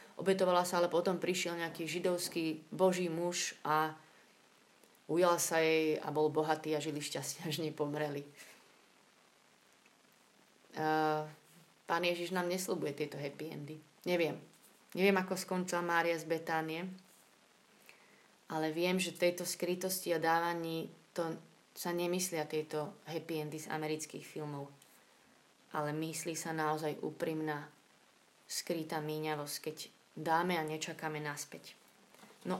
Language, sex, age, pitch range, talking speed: Slovak, female, 30-49, 155-190 Hz, 120 wpm